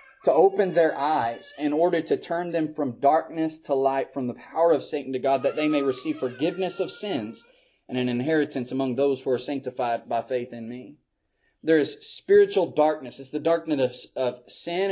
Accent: American